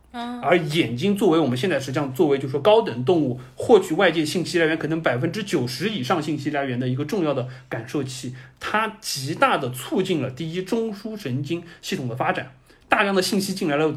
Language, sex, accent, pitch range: Chinese, male, native, 135-185 Hz